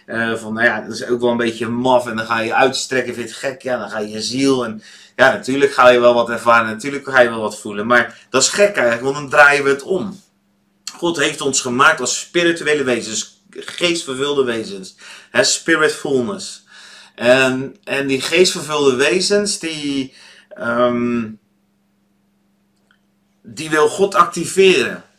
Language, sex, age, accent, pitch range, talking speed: Dutch, male, 30-49, Dutch, 115-150 Hz, 175 wpm